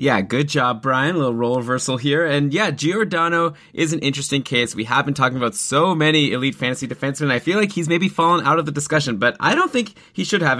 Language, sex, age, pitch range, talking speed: English, male, 20-39, 120-155 Hz, 245 wpm